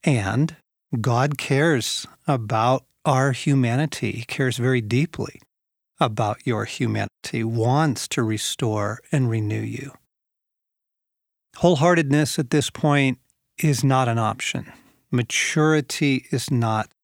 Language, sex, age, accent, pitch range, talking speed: English, male, 50-69, American, 120-150 Hz, 105 wpm